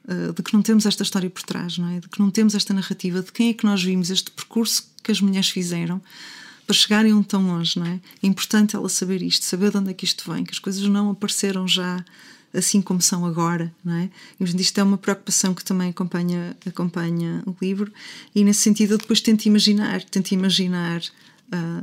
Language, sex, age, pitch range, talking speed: Portuguese, female, 20-39, 170-205 Hz, 215 wpm